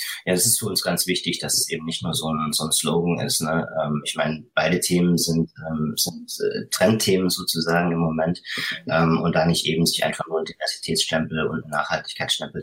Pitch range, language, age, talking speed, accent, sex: 80-100 Hz, German, 30-49, 185 wpm, German, male